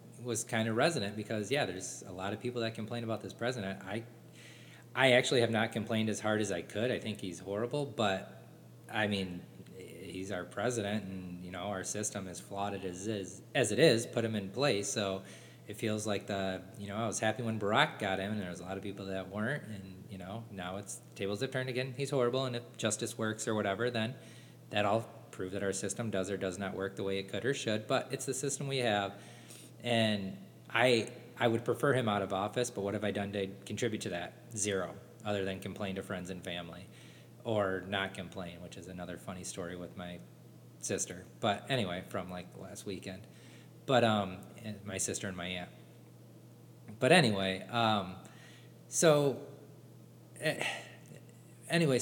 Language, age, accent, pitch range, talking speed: English, 20-39, American, 95-120 Hz, 200 wpm